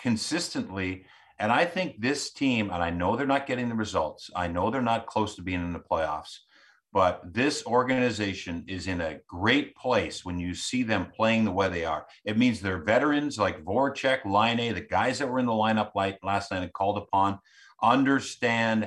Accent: American